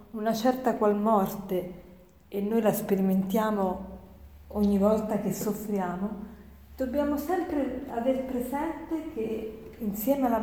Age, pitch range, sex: 40-59, 200-275 Hz, female